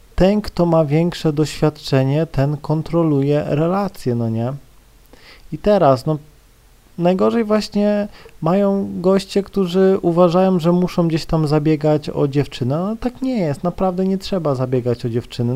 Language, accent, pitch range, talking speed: Polish, native, 145-190 Hz, 145 wpm